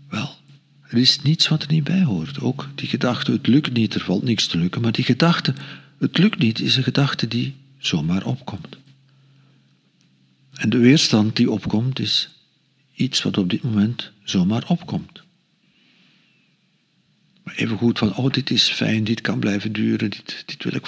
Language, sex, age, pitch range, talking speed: Dutch, male, 50-69, 110-175 Hz, 170 wpm